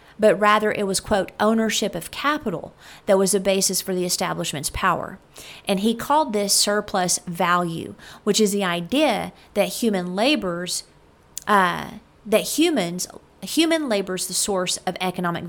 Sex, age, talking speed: female, 40-59, 130 wpm